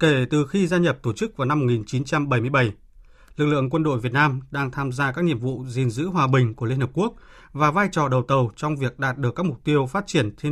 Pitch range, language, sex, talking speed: 130-165 Hz, Vietnamese, male, 255 wpm